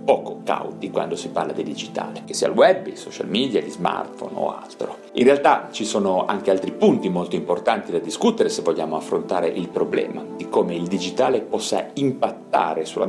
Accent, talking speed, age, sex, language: native, 190 wpm, 40-59, male, Italian